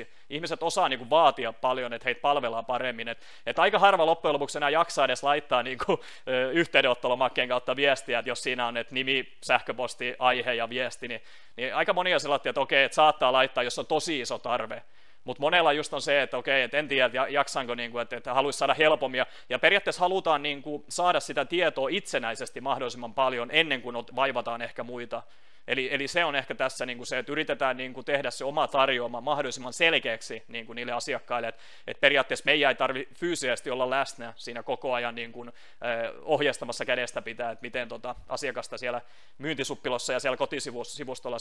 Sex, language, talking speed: male, Finnish, 175 wpm